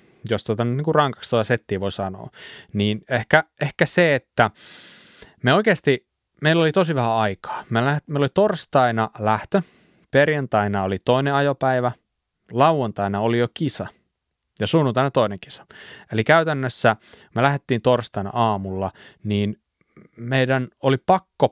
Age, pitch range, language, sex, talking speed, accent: 20-39, 105-140 Hz, Finnish, male, 130 wpm, native